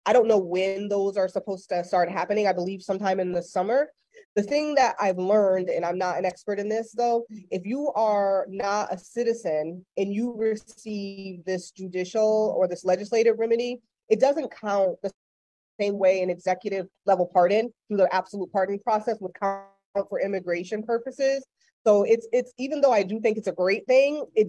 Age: 20-39